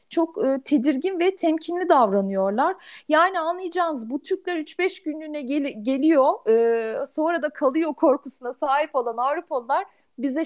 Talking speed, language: 130 wpm, Turkish